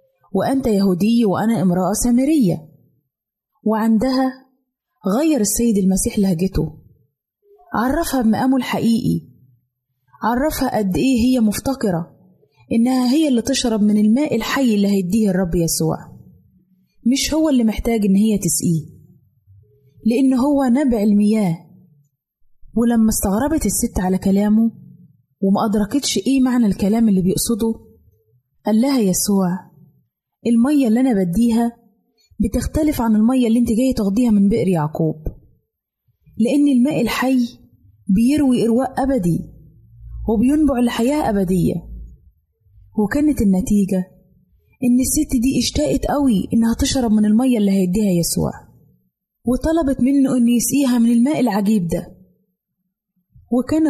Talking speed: 110 wpm